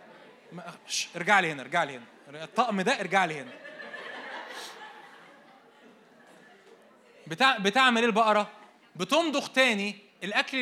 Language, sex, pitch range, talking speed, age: Arabic, male, 190-245 Hz, 100 wpm, 20-39